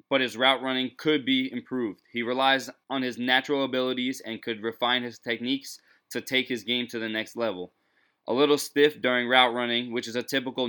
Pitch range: 115-135 Hz